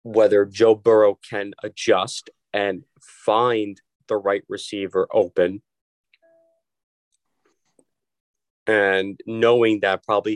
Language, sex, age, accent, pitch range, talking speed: English, male, 30-49, American, 100-125 Hz, 85 wpm